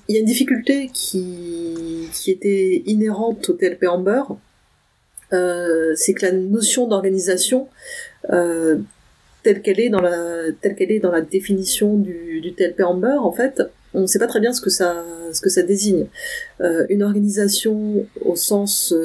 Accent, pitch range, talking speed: French, 175-215 Hz, 165 wpm